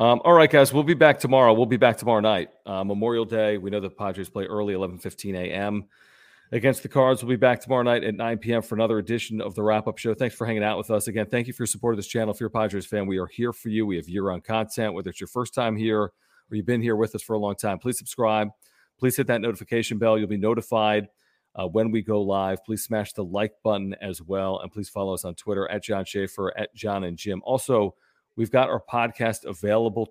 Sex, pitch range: male, 100-120 Hz